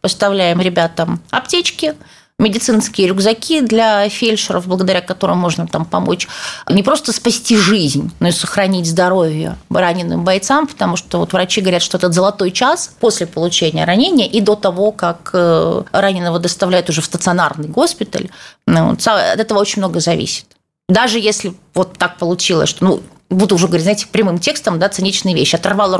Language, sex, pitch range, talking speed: Russian, female, 175-220 Hz, 155 wpm